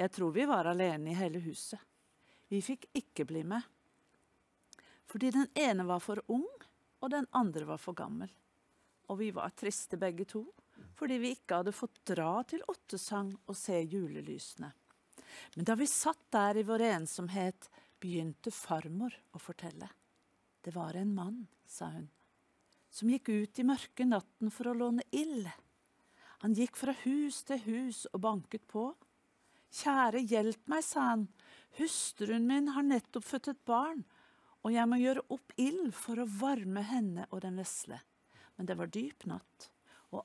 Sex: female